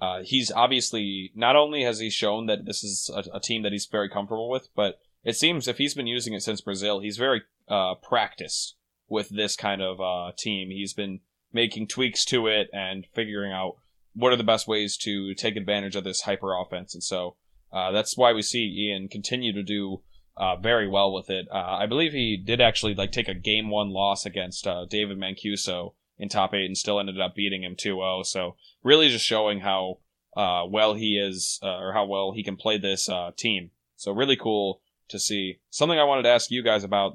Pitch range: 95-115 Hz